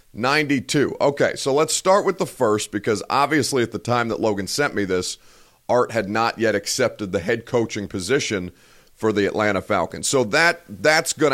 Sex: male